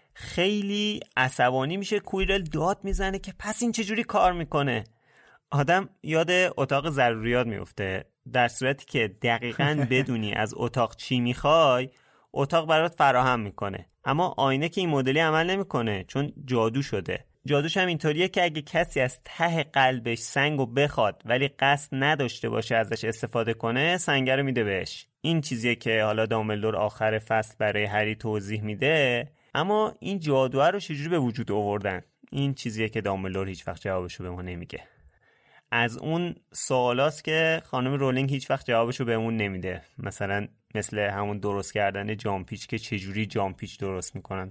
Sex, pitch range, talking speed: male, 110-150 Hz, 150 wpm